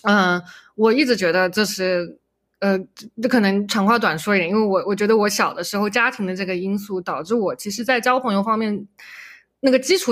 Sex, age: female, 20-39